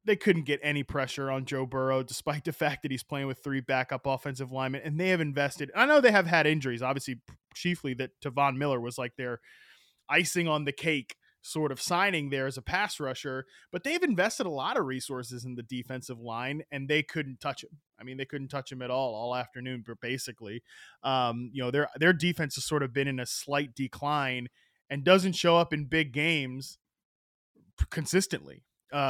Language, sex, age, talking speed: English, male, 20-39, 205 wpm